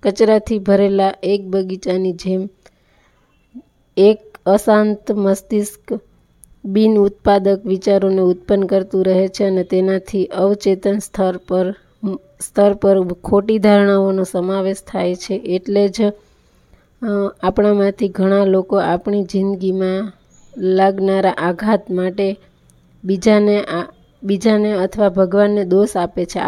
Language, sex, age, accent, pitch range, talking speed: Gujarati, female, 20-39, native, 190-210 Hz, 100 wpm